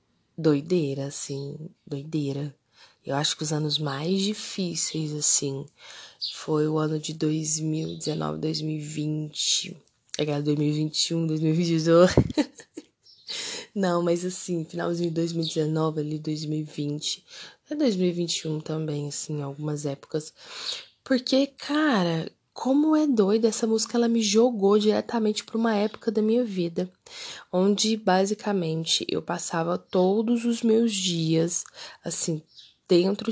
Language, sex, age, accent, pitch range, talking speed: Portuguese, female, 10-29, Brazilian, 160-215 Hz, 115 wpm